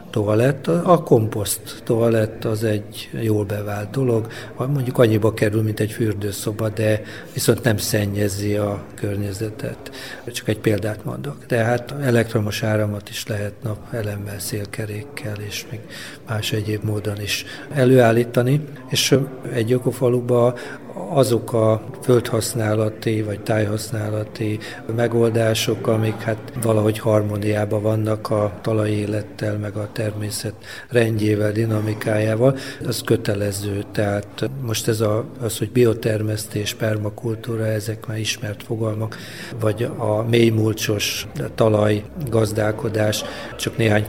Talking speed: 110 wpm